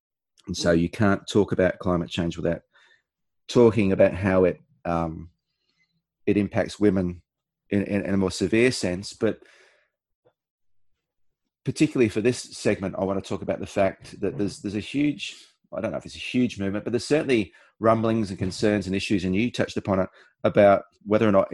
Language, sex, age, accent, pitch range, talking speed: English, male, 30-49, Australian, 95-110 Hz, 185 wpm